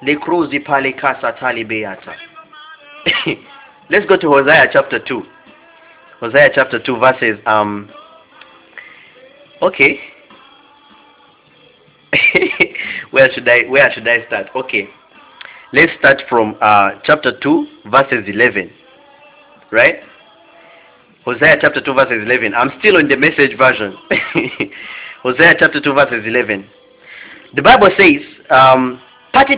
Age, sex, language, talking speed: 20-39, male, English, 110 wpm